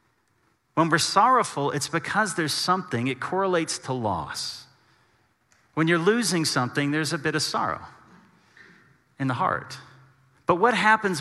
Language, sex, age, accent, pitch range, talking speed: English, male, 40-59, American, 125-160 Hz, 140 wpm